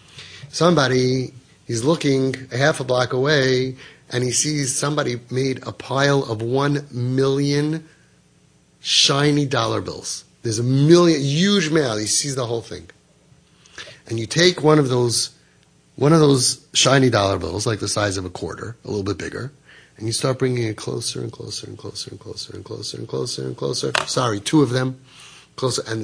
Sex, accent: male, American